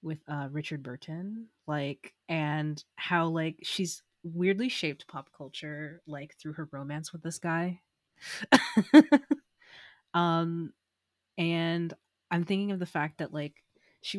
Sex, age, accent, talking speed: female, 20-39, American, 125 wpm